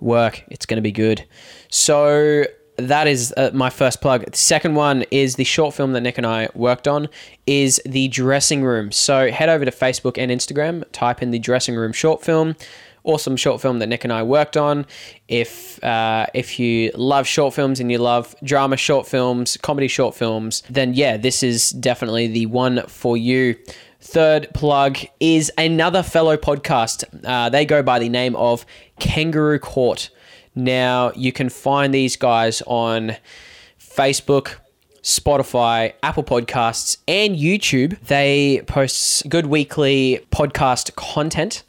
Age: 10-29